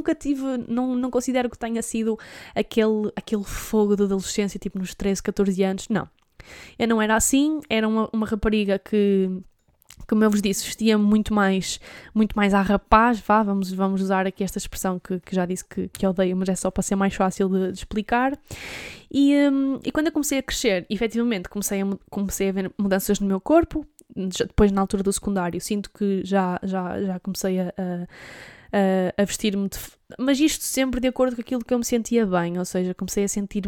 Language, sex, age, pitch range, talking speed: Portuguese, female, 10-29, 195-230 Hz, 205 wpm